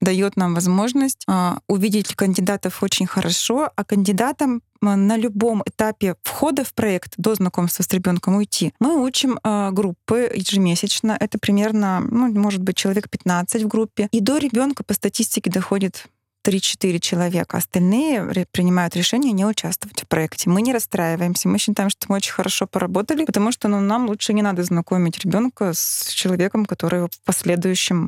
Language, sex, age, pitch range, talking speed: Russian, female, 20-39, 185-225 Hz, 155 wpm